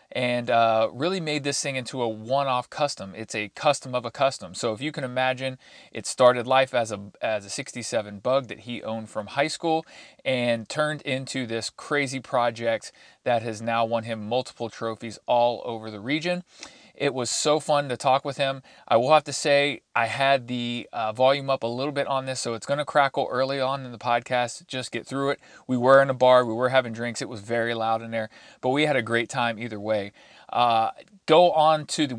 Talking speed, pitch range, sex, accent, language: 220 wpm, 115-140 Hz, male, American, English